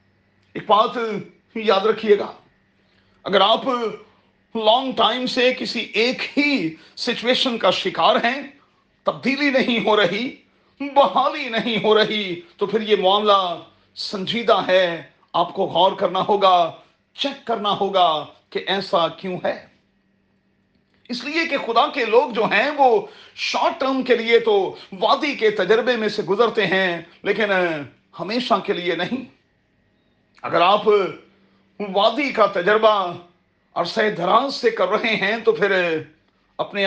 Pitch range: 190-245 Hz